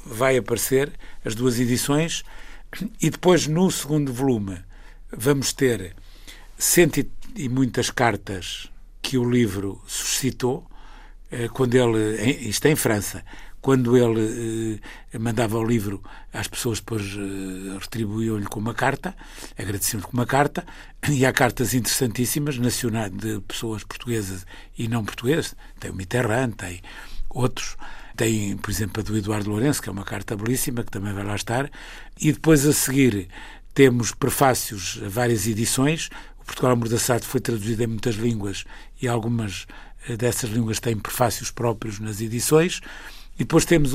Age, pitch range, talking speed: 60-79, 110-135 Hz, 140 wpm